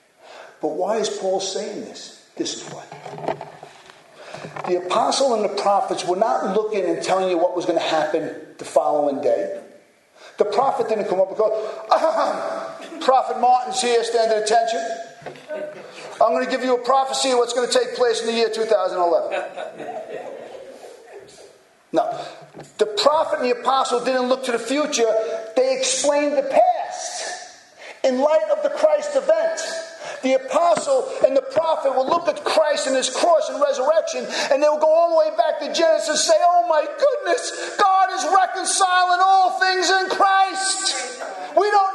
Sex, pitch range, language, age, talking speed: male, 250-355 Hz, English, 50-69, 165 wpm